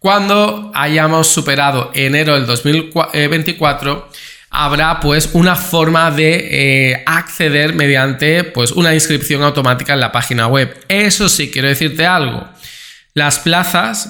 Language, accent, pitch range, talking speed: Spanish, Spanish, 135-160 Hz, 130 wpm